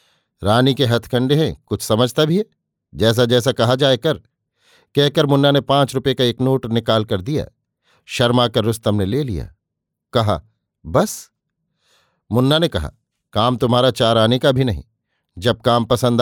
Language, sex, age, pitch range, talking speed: Hindi, male, 50-69, 115-140 Hz, 165 wpm